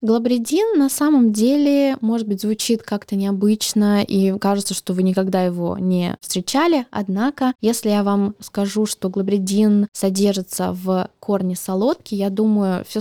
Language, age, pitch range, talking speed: Russian, 20-39, 200-240 Hz, 145 wpm